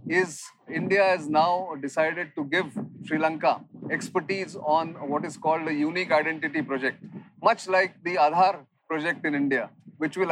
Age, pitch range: 40-59, 150-180 Hz